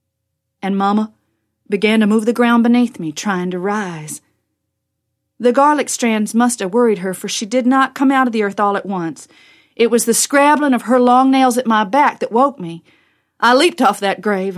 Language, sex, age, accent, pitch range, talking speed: English, female, 40-59, American, 200-250 Hz, 205 wpm